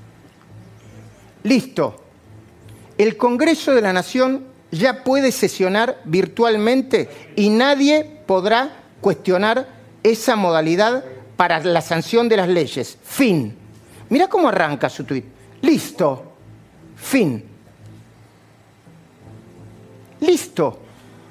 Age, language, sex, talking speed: 40-59, Spanish, male, 85 wpm